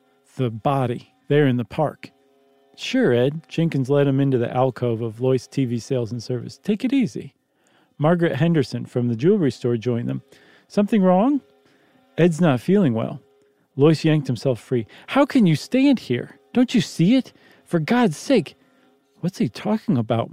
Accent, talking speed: American, 170 wpm